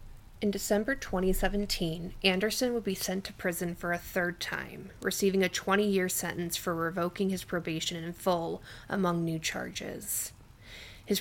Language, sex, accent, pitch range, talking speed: English, female, American, 175-200 Hz, 150 wpm